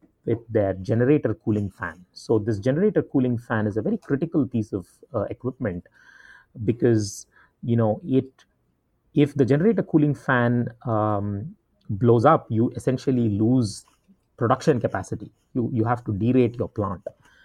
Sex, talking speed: male, 145 wpm